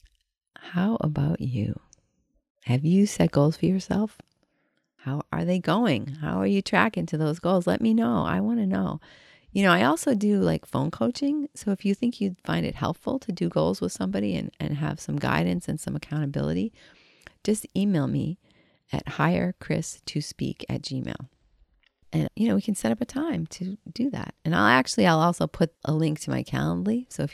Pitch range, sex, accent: 125-190 Hz, female, American